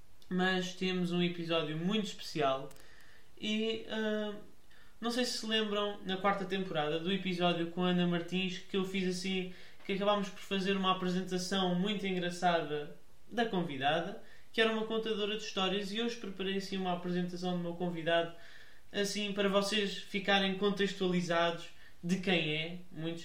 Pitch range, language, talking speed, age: 175-205 Hz, Portuguese, 150 wpm, 20-39